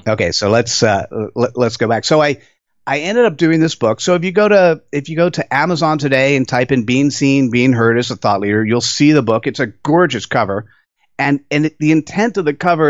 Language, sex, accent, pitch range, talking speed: English, male, American, 120-160 Hz, 245 wpm